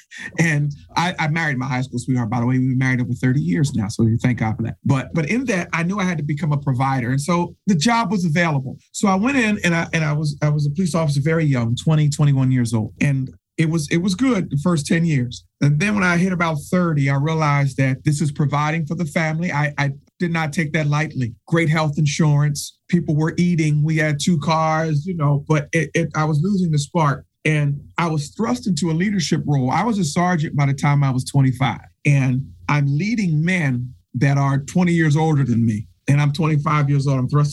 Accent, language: American, English